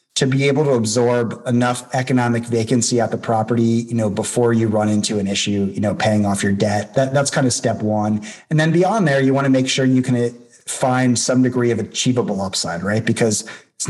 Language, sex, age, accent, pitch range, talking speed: English, male, 30-49, American, 110-130 Hz, 220 wpm